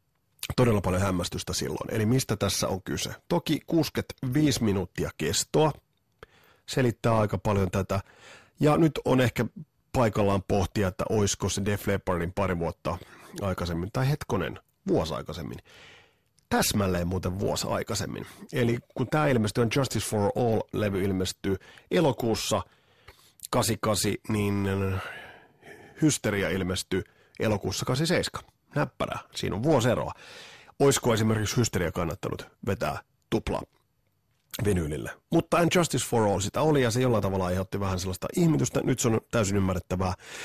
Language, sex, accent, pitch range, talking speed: Finnish, male, native, 100-125 Hz, 125 wpm